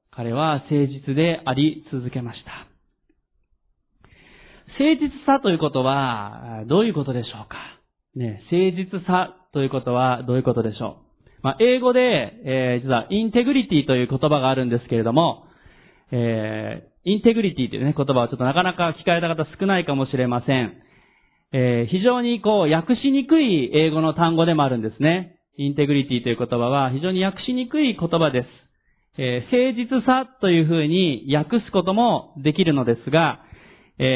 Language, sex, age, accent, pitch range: Japanese, male, 30-49, native, 130-190 Hz